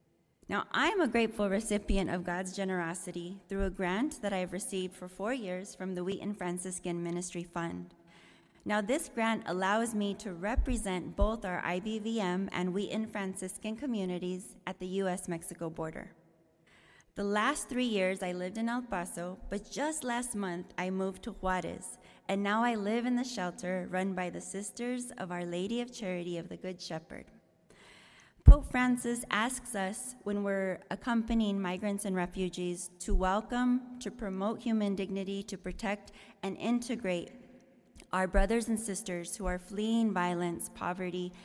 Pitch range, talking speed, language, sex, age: 180-220 Hz, 155 wpm, English, female, 20-39